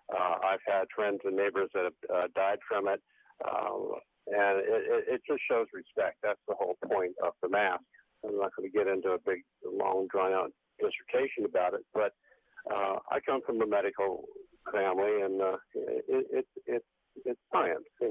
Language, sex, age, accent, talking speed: English, male, 50-69, American, 170 wpm